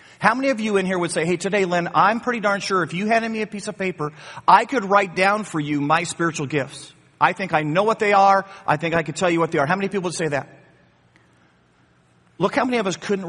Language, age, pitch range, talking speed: English, 40-59, 145-195 Hz, 270 wpm